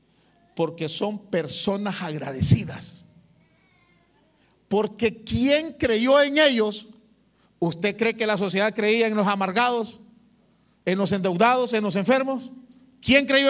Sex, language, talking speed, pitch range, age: male, Spanish, 115 wpm, 190-245 Hz, 50-69